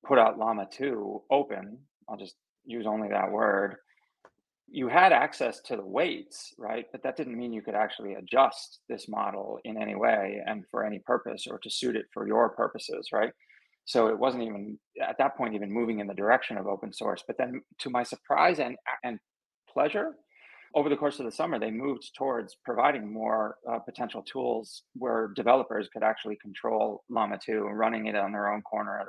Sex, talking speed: male, 195 wpm